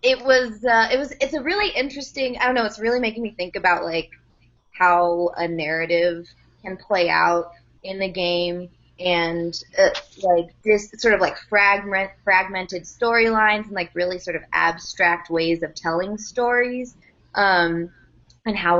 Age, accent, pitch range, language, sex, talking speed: 20-39, American, 160-210 Hz, English, female, 165 wpm